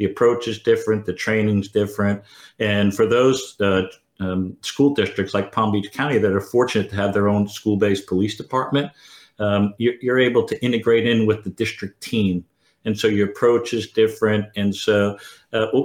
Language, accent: English, American